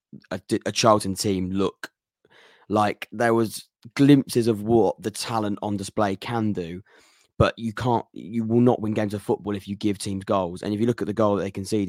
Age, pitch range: 20-39, 100-130 Hz